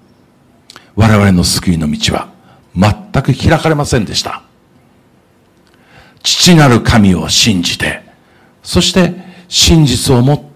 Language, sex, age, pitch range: Japanese, male, 60-79, 105-170 Hz